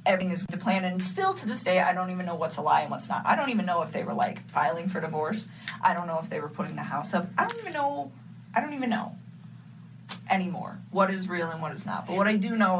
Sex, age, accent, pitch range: female, 20-39, American, 160-195 Hz